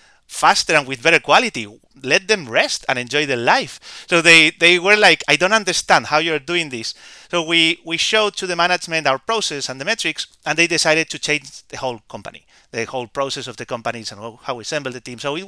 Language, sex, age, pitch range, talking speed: English, male, 30-49, 135-185 Hz, 225 wpm